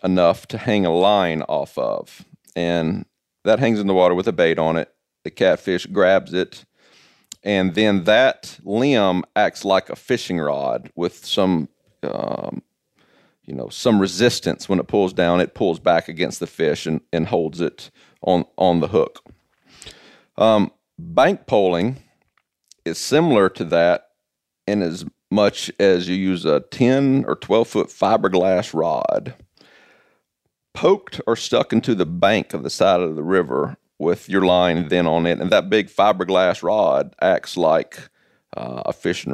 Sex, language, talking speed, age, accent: male, English, 155 wpm, 40-59, American